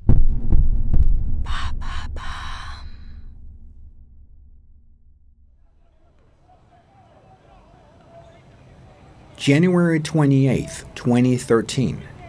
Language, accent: English, American